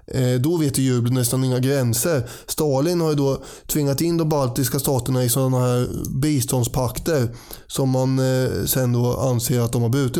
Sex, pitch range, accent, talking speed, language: male, 125-150 Hz, native, 165 wpm, Swedish